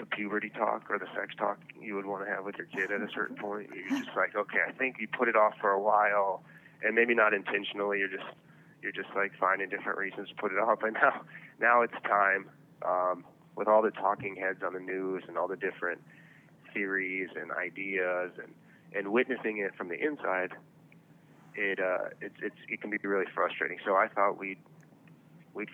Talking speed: 210 wpm